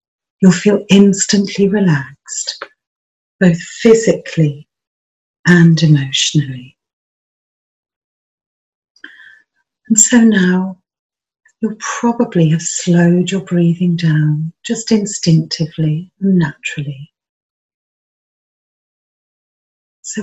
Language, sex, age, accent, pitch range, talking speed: English, female, 40-59, British, 160-195 Hz, 70 wpm